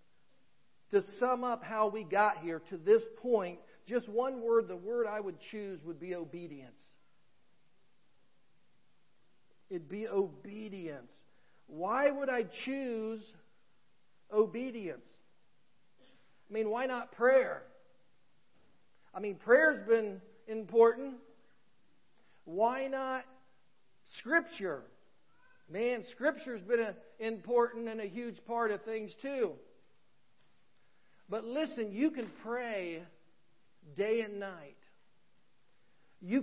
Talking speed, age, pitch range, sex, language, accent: 100 wpm, 50-69, 205-255 Hz, male, English, American